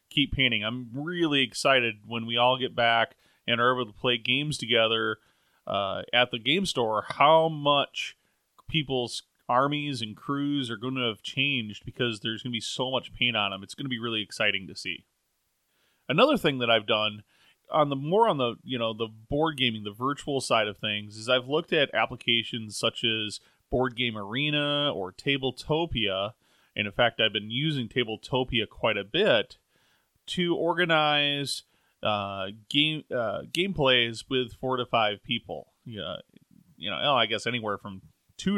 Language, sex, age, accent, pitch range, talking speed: English, male, 30-49, American, 115-140 Hz, 175 wpm